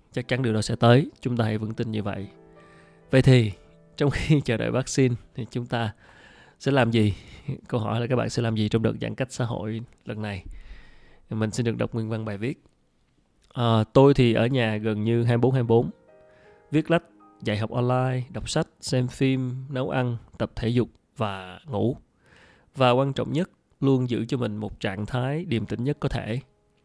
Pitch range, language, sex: 110-130 Hz, Vietnamese, male